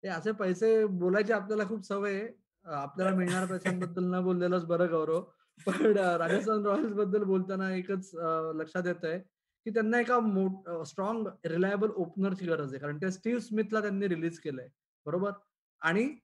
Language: Marathi